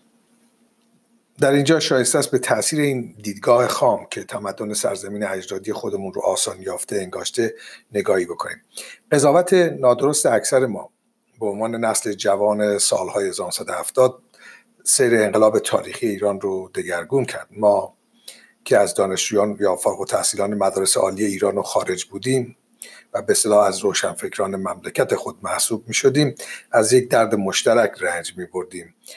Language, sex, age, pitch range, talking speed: Persian, male, 50-69, 105-150 Hz, 140 wpm